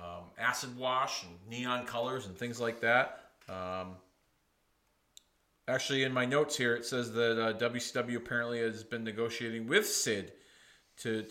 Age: 40-59